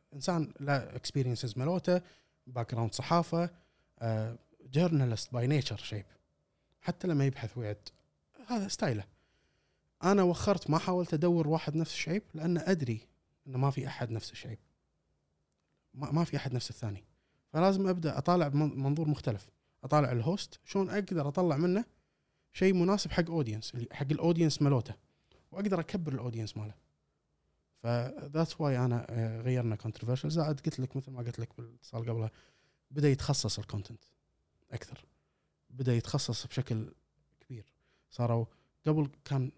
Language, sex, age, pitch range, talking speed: Arabic, male, 20-39, 115-155 Hz, 130 wpm